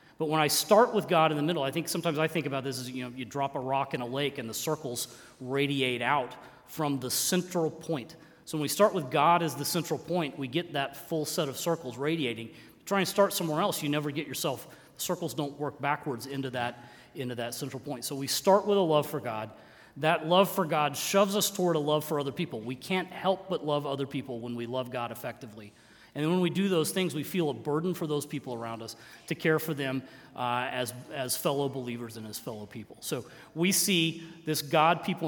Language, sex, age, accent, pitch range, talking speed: English, male, 30-49, American, 130-165 Hz, 240 wpm